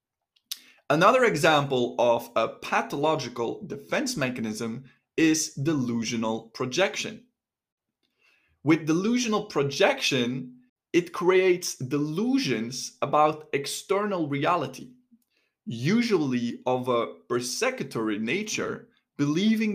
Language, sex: English, male